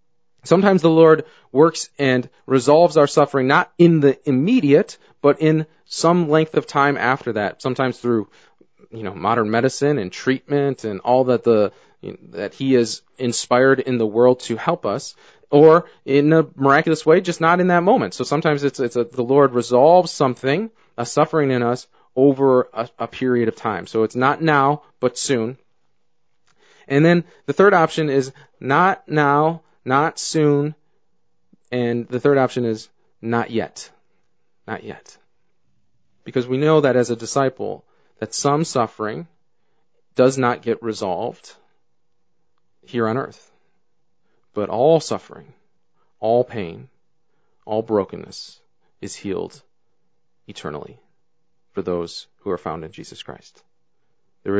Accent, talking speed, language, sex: American, 145 wpm, English, male